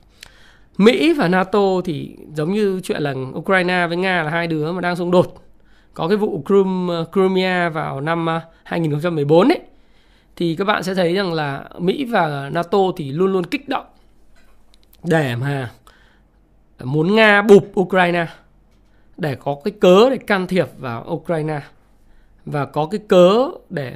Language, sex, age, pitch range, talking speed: Vietnamese, male, 20-39, 145-190 Hz, 155 wpm